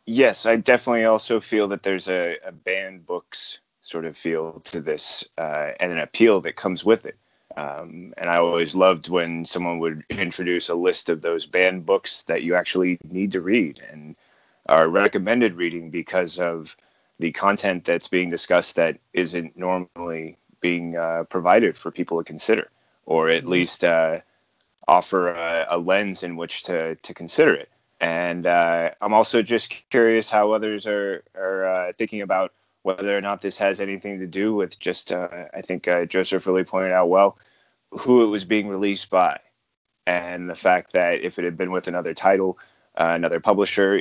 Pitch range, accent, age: 85-100 Hz, American, 30-49